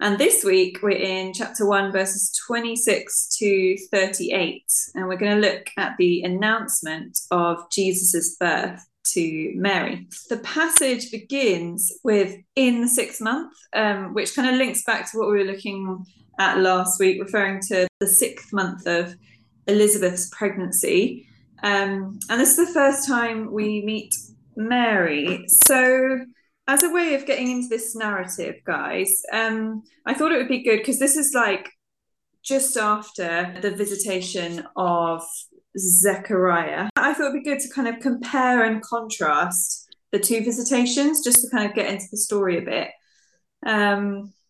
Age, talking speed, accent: 20-39, 155 wpm, British